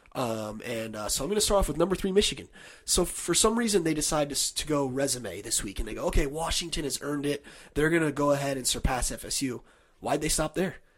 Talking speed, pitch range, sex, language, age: 245 wpm, 135-180 Hz, male, English, 30-49